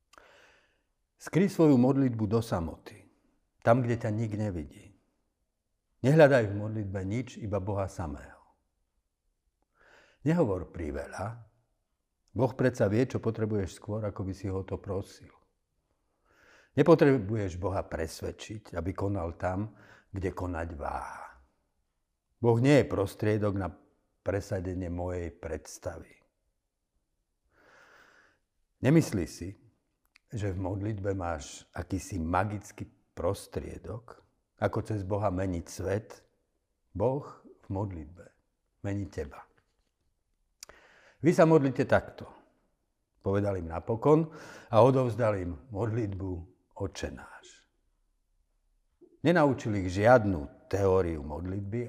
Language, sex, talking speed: Slovak, male, 95 wpm